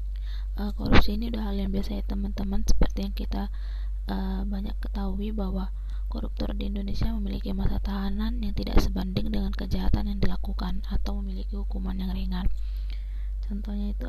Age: 20-39